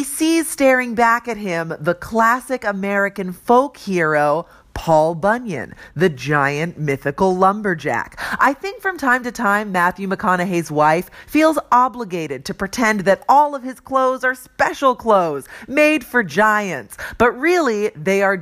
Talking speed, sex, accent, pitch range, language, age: 145 wpm, female, American, 185-270 Hz, English, 40-59